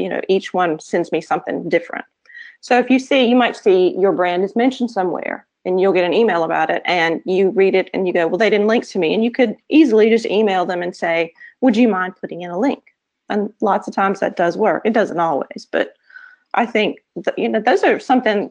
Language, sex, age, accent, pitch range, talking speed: English, female, 40-59, American, 175-230 Hz, 240 wpm